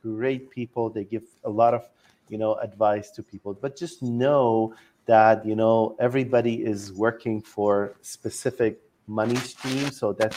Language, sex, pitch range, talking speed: English, male, 110-130 Hz, 155 wpm